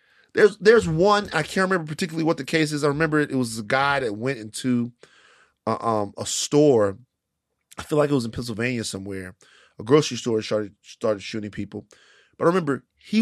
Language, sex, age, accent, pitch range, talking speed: English, male, 30-49, American, 135-220 Hz, 200 wpm